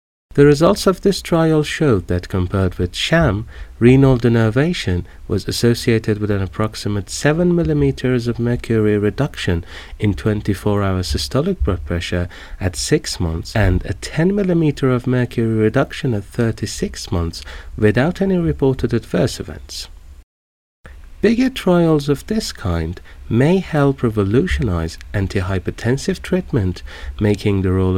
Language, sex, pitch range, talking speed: Persian, male, 90-140 Hz, 125 wpm